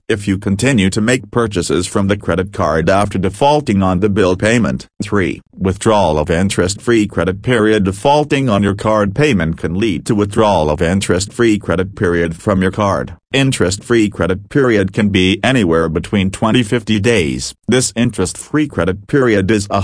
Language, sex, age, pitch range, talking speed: English, male, 40-59, 95-115 Hz, 160 wpm